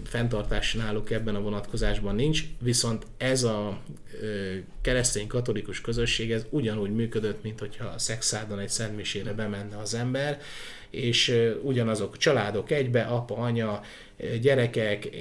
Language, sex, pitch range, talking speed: Hungarian, male, 110-125 Hz, 105 wpm